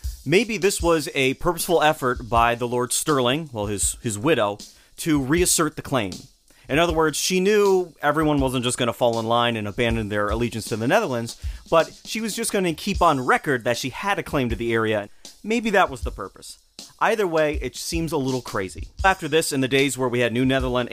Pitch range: 120-165 Hz